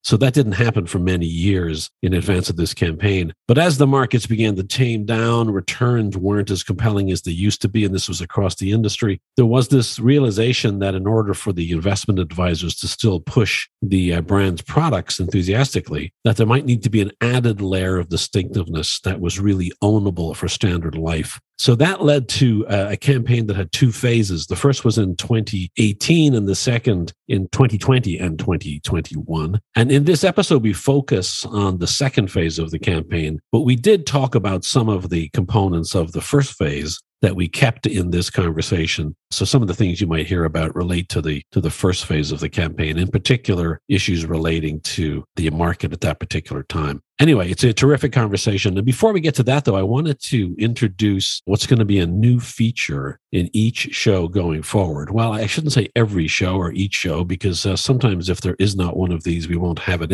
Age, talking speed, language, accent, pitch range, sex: 50-69, 205 wpm, English, American, 90-120 Hz, male